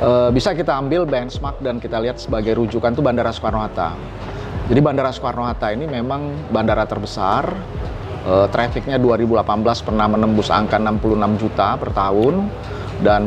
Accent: native